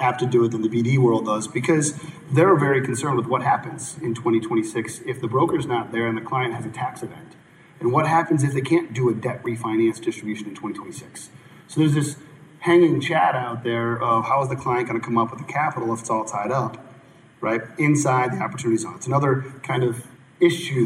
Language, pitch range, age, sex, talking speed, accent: English, 115-155 Hz, 30-49, male, 220 wpm, American